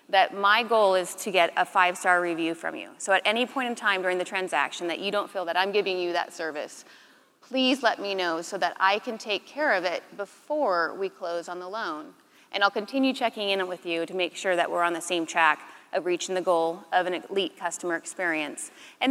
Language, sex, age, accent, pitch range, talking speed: English, female, 30-49, American, 180-225 Hz, 230 wpm